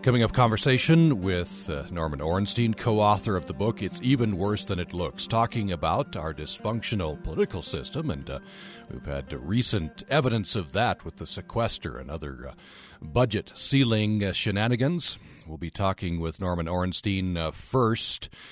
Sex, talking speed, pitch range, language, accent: male, 155 wpm, 85-115 Hz, English, American